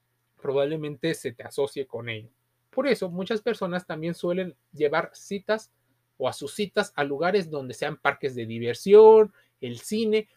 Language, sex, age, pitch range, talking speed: Spanish, male, 30-49, 145-220 Hz, 155 wpm